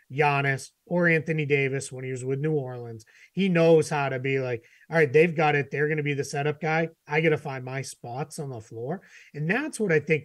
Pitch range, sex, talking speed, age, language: 135-165 Hz, male, 245 wpm, 30-49, English